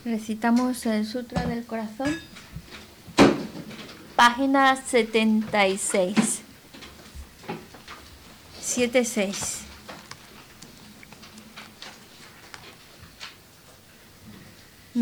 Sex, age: female, 20-39